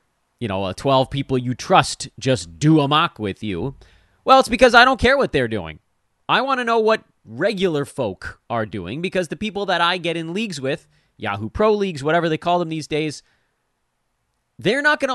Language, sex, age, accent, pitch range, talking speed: English, male, 30-49, American, 100-160 Hz, 205 wpm